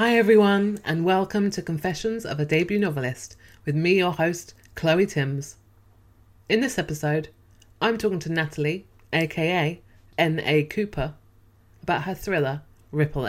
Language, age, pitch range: English, 20-39, 125-165 Hz